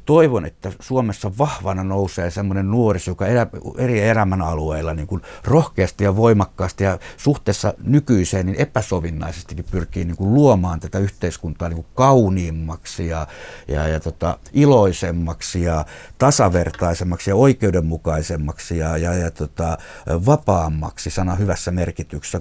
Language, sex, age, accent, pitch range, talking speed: Finnish, male, 60-79, native, 85-105 Hz, 115 wpm